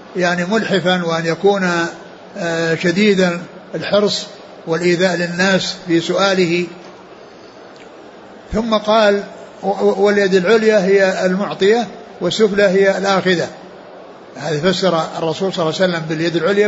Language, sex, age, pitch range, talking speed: Arabic, male, 60-79, 175-205 Hz, 100 wpm